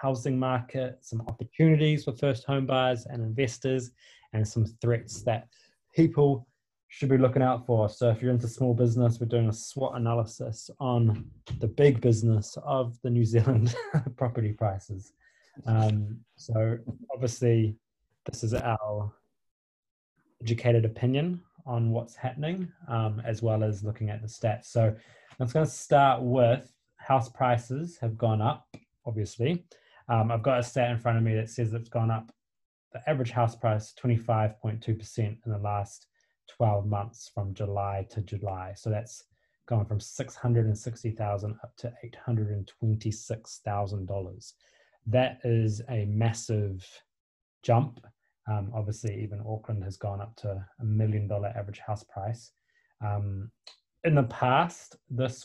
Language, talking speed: English, 145 wpm